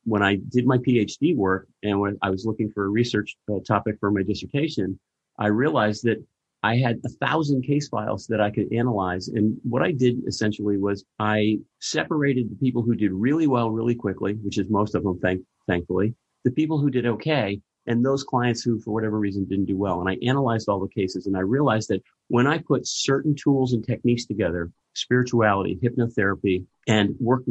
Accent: American